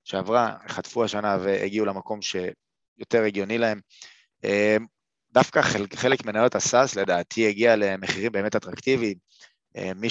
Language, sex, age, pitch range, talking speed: Hebrew, male, 20-39, 100-115 Hz, 105 wpm